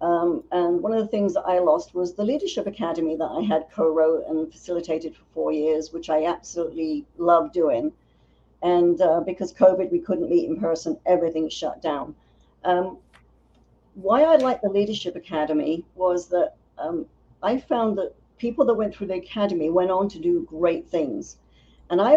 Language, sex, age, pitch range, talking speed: English, female, 60-79, 175-225 Hz, 180 wpm